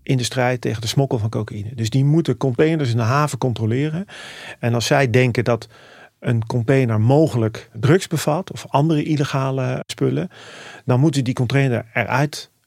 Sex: male